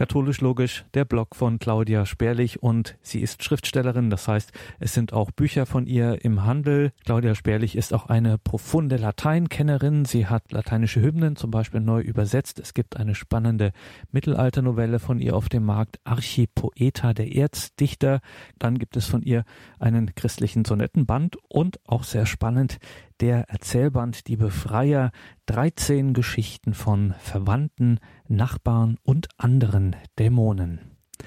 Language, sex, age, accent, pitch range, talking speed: German, male, 40-59, German, 110-130 Hz, 140 wpm